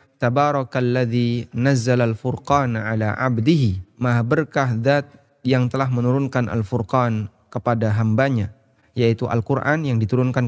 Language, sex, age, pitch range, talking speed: Indonesian, male, 20-39, 115-145 Hz, 90 wpm